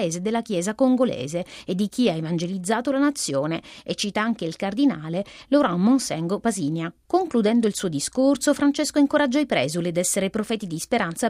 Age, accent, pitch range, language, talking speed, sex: 30-49, native, 175-270 Hz, Italian, 165 wpm, female